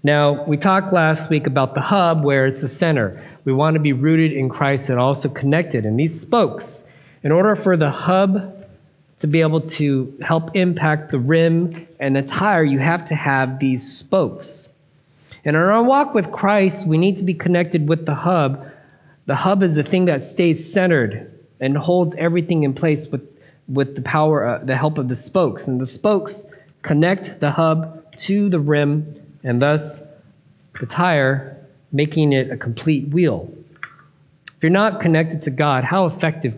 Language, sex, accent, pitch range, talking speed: English, male, American, 135-165 Hz, 180 wpm